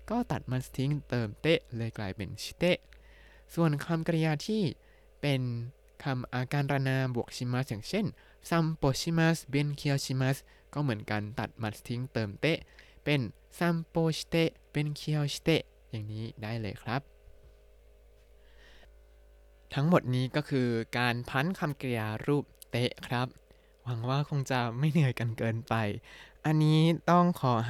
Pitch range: 115-150 Hz